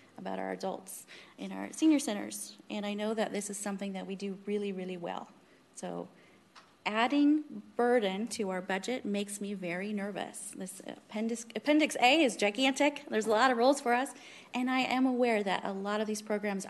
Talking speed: 190 wpm